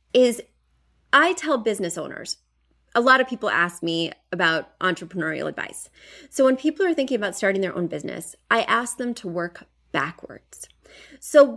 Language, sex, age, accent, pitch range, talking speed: English, female, 30-49, American, 185-260 Hz, 160 wpm